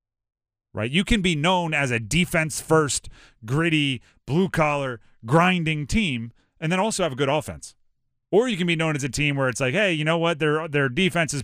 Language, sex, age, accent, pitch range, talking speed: English, male, 30-49, American, 120-160 Hz, 210 wpm